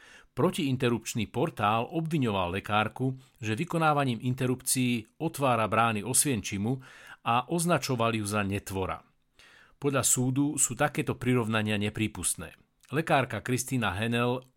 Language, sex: Slovak, male